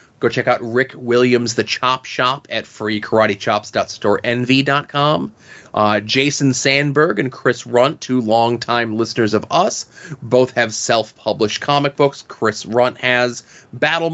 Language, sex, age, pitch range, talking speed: English, male, 30-49, 110-135 Hz, 125 wpm